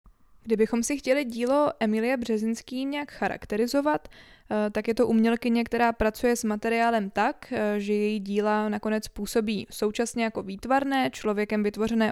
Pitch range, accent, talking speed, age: 210-230 Hz, native, 135 wpm, 20-39